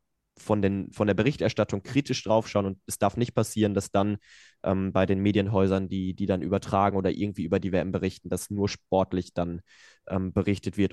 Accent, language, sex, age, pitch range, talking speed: German, German, male, 20-39, 100-115 Hz, 190 wpm